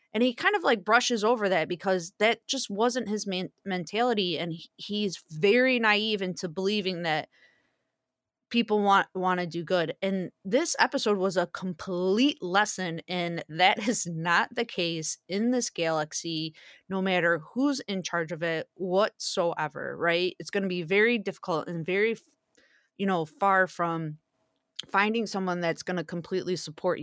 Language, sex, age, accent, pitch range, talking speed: English, female, 20-39, American, 175-230 Hz, 160 wpm